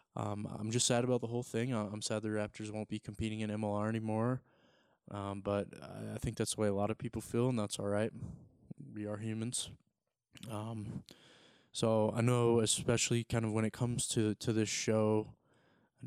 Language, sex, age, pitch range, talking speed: English, male, 20-39, 105-115 Hz, 200 wpm